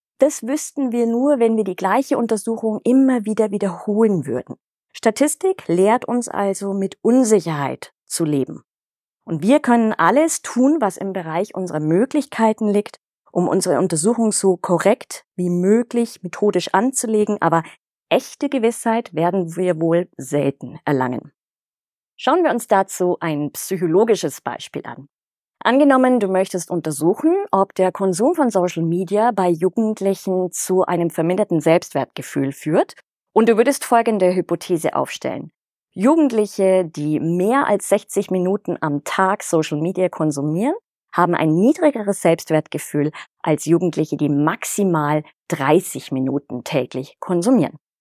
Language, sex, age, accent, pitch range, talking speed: German, female, 30-49, German, 165-230 Hz, 130 wpm